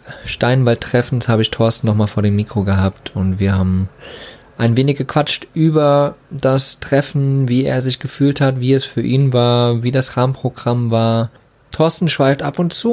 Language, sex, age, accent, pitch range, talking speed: German, male, 20-39, German, 110-140 Hz, 170 wpm